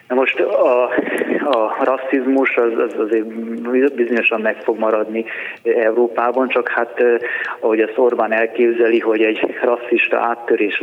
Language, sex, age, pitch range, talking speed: Hungarian, male, 20-39, 110-125 Hz, 120 wpm